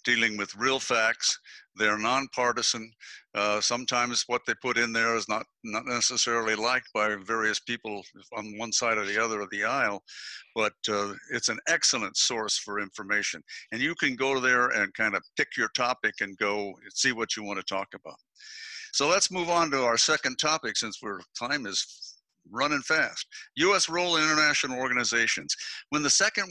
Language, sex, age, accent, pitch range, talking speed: English, male, 60-79, American, 105-150 Hz, 185 wpm